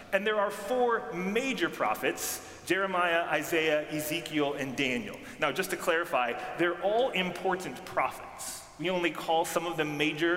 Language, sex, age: English, male, 30-49